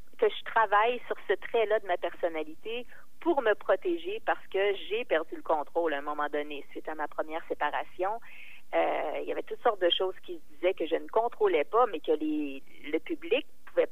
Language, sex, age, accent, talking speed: French, female, 40-59, Canadian, 210 wpm